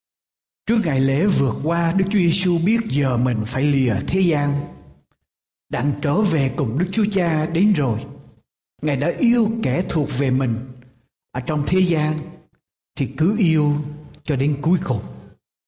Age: 60-79